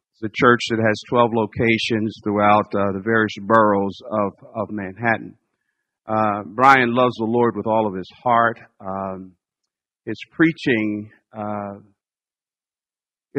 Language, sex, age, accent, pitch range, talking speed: English, male, 50-69, American, 105-115 Hz, 130 wpm